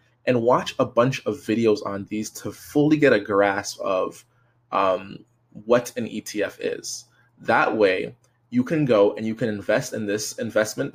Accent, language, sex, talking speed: American, English, male, 170 wpm